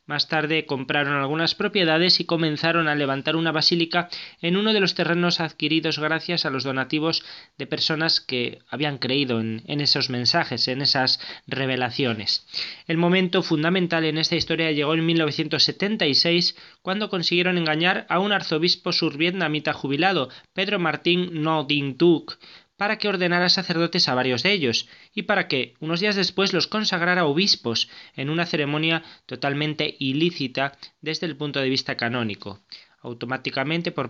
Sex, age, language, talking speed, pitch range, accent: male, 20-39, Spanish, 145 wpm, 140-175 Hz, Spanish